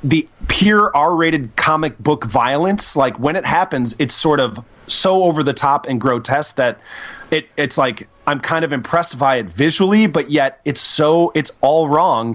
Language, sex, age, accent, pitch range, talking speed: English, male, 30-49, American, 125-165 Hz, 170 wpm